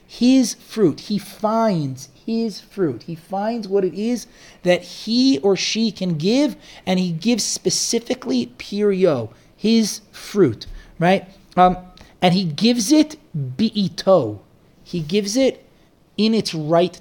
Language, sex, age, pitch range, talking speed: English, male, 30-49, 150-200 Hz, 130 wpm